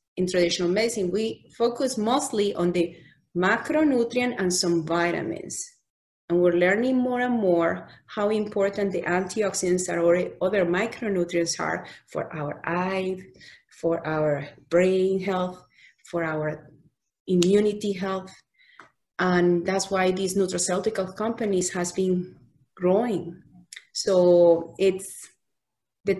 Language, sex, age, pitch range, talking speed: English, female, 30-49, 175-205 Hz, 115 wpm